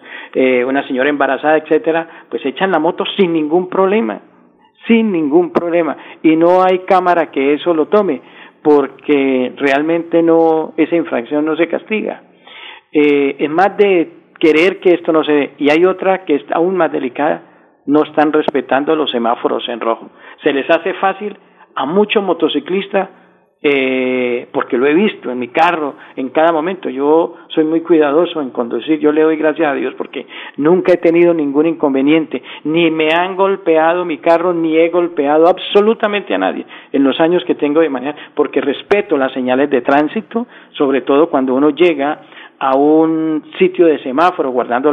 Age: 50-69